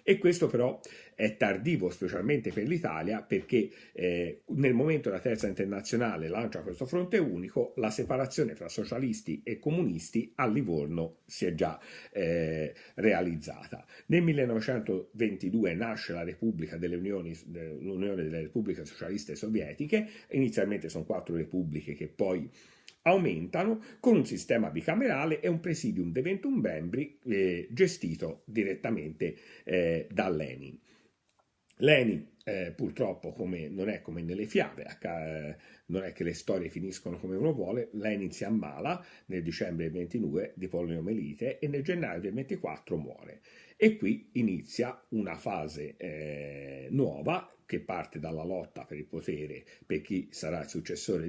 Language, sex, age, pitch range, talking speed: Italian, male, 50-69, 80-140 Hz, 135 wpm